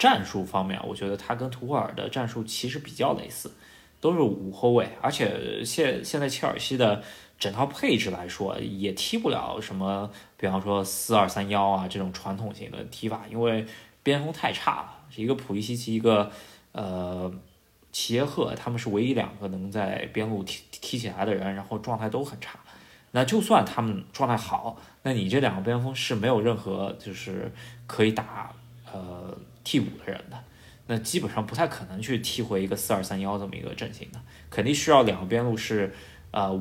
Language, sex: Chinese, male